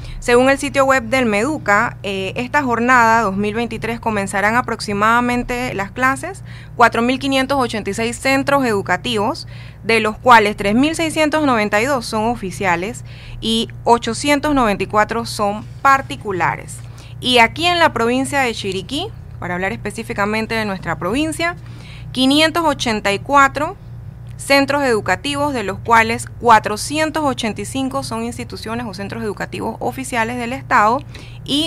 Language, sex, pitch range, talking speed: Spanish, female, 175-245 Hz, 105 wpm